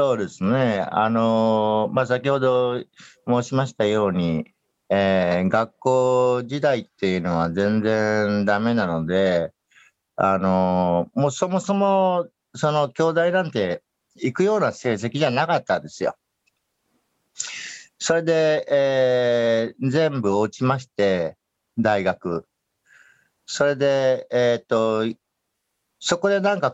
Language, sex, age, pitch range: Japanese, male, 50-69, 105-150 Hz